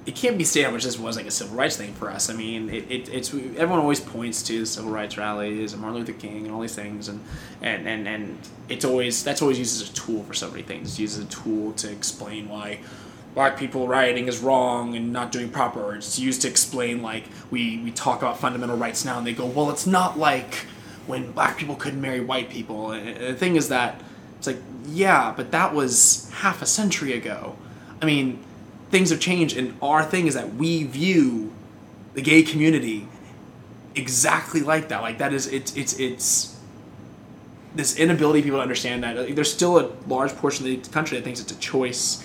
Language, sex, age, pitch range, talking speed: English, male, 20-39, 110-145 Hz, 220 wpm